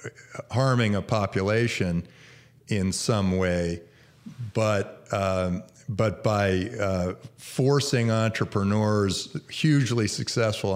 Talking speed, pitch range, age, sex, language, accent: 85 wpm, 95-125 Hz, 50-69, male, English, American